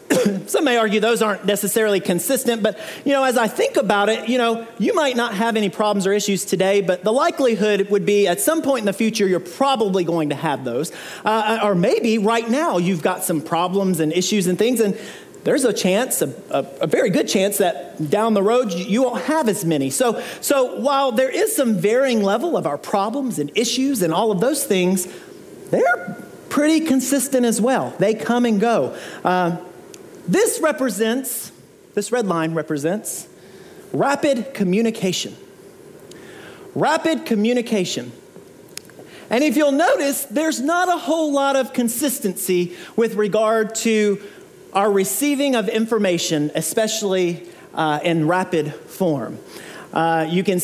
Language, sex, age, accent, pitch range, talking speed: English, male, 40-59, American, 185-260 Hz, 165 wpm